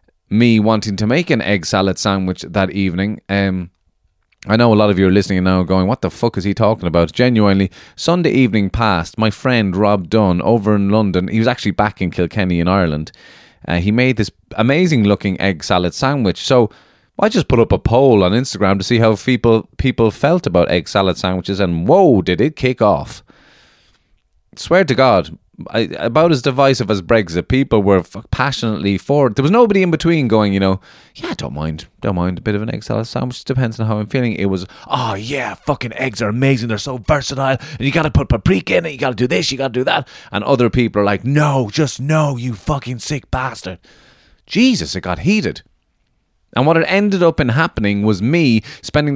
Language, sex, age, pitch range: English, male, 30-49, 100-135 Hz